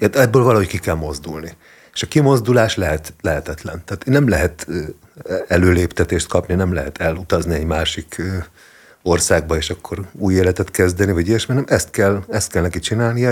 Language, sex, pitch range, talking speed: Hungarian, male, 85-100 Hz, 160 wpm